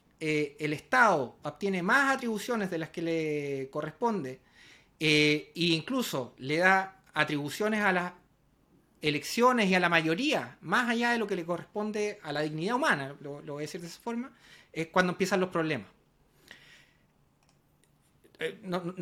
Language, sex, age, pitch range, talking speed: Spanish, male, 30-49, 160-210 Hz, 155 wpm